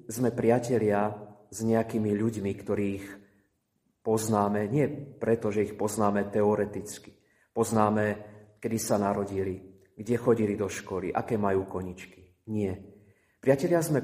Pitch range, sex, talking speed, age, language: 100-115 Hz, male, 115 wpm, 30-49, Slovak